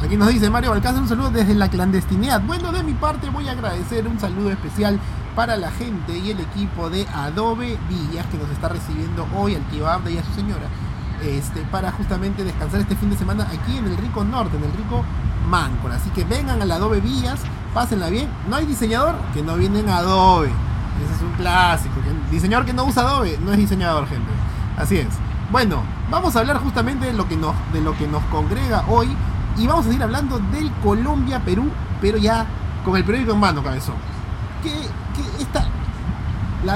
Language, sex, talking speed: Spanish, male, 200 wpm